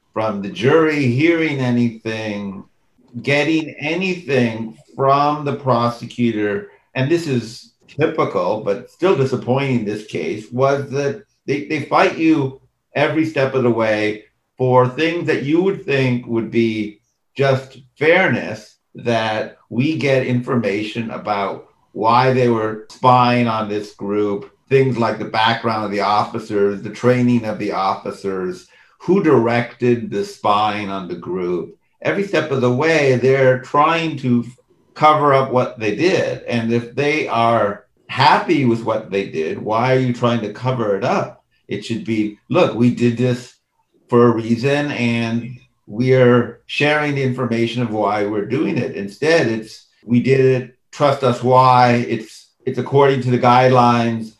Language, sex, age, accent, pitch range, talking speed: English, male, 50-69, American, 110-135 Hz, 150 wpm